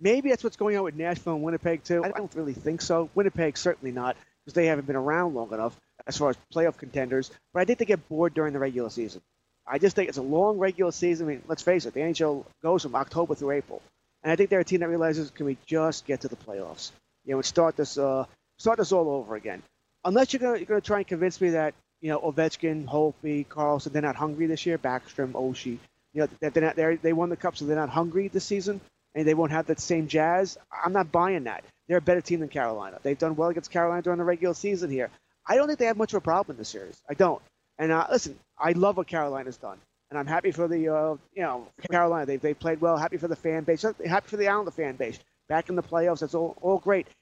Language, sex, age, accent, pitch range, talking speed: English, male, 30-49, American, 150-185 Hz, 260 wpm